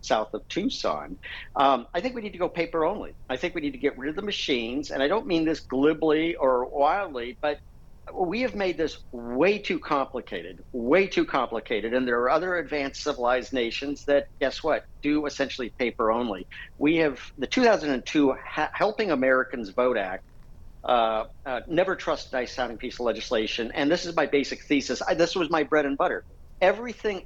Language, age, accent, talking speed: English, 50-69, American, 185 wpm